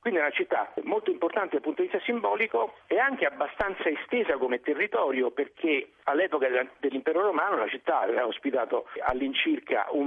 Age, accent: 50-69, native